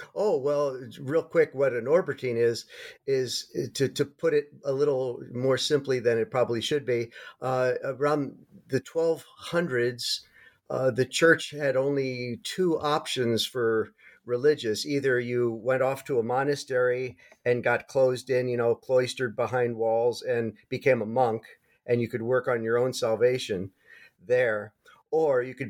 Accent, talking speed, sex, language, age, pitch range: American, 155 wpm, male, English, 50-69, 120-165 Hz